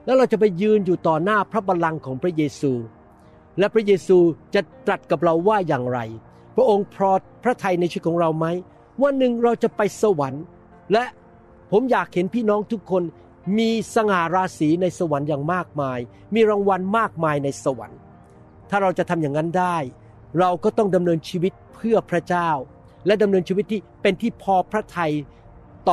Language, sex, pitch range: Thai, male, 155-210 Hz